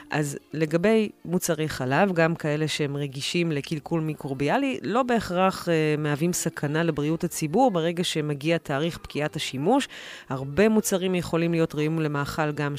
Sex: female